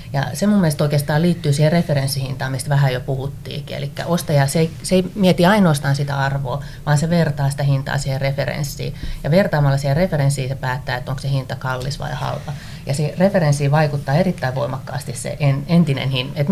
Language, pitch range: Finnish, 135-155 Hz